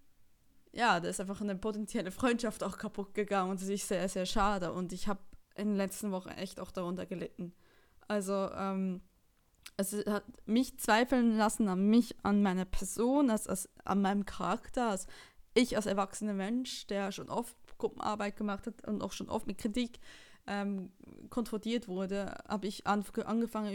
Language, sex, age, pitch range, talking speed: German, female, 20-39, 195-230 Hz, 165 wpm